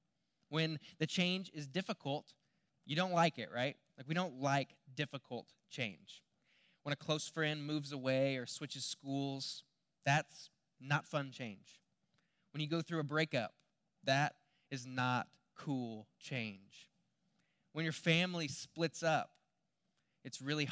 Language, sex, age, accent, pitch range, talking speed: English, male, 20-39, American, 130-175 Hz, 135 wpm